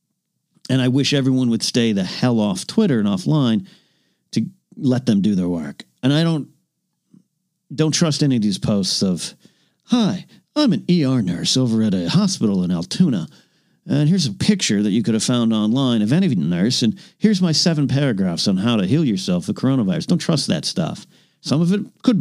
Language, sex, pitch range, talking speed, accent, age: English, male, 125-195 Hz, 195 wpm, American, 50-69